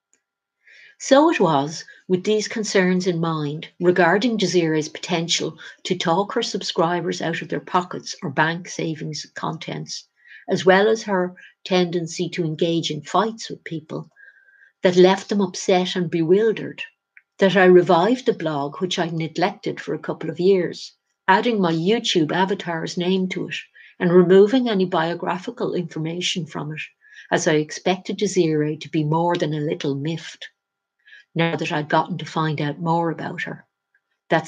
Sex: female